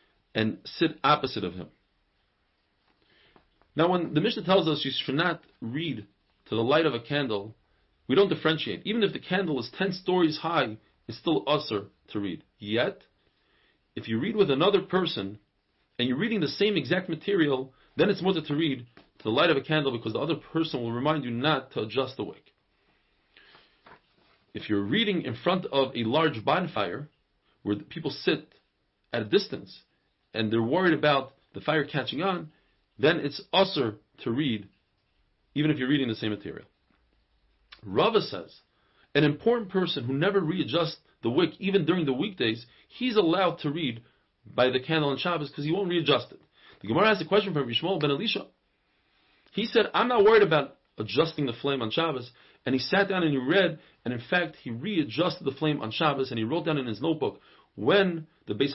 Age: 40-59